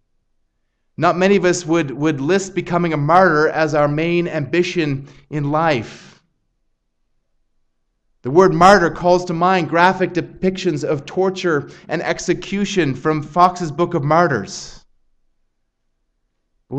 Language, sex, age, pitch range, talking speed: English, male, 30-49, 150-185 Hz, 120 wpm